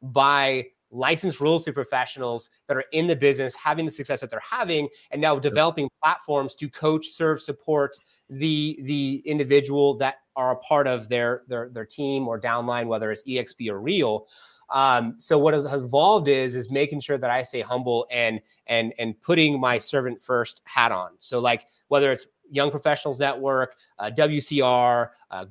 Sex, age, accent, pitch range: male, 30-49, American, 125-145 Hz